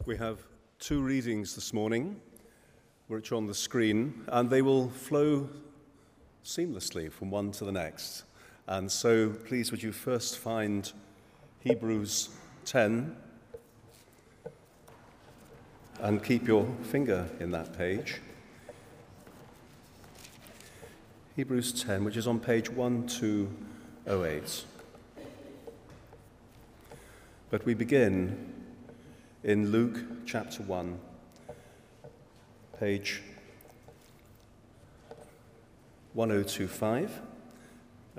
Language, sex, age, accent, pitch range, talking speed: English, male, 40-59, British, 100-120 Hz, 85 wpm